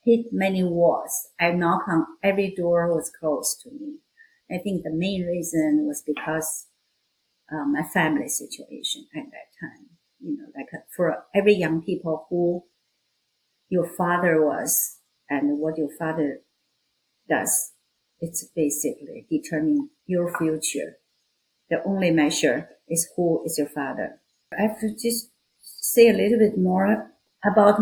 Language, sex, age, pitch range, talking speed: English, female, 50-69, 165-210 Hz, 140 wpm